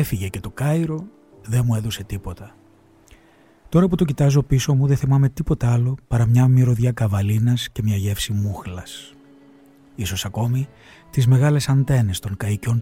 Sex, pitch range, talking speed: male, 110-140 Hz, 155 wpm